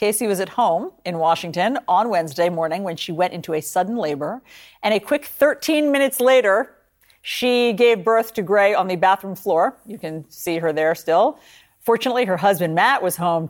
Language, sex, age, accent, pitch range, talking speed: English, female, 50-69, American, 165-210 Hz, 190 wpm